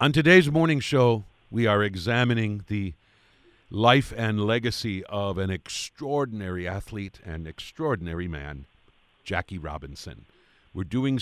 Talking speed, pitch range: 120 wpm, 85-110 Hz